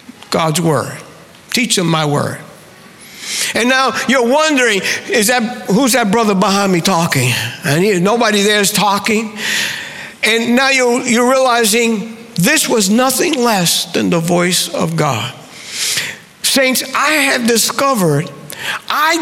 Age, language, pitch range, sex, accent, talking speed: 60-79, English, 175-255 Hz, male, American, 135 wpm